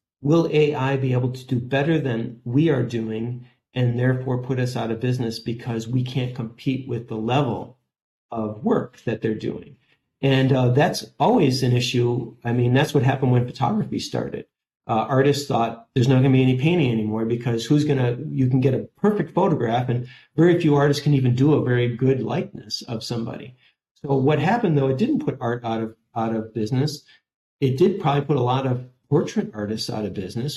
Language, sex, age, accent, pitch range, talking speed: English, male, 50-69, American, 120-140 Hz, 200 wpm